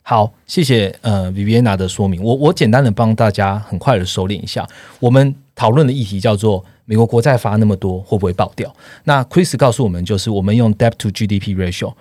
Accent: native